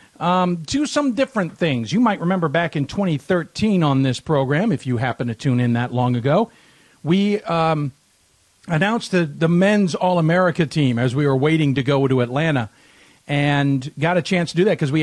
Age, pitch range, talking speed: 50-69, 135-180 Hz, 210 wpm